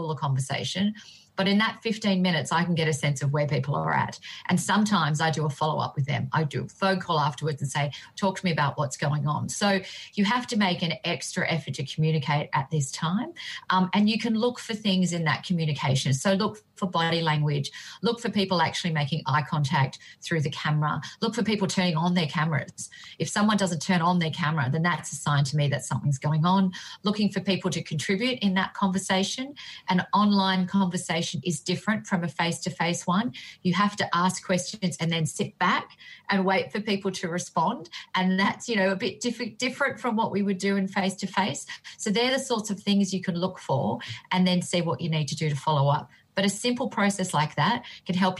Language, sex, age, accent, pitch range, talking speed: English, female, 40-59, Australian, 155-195 Hz, 220 wpm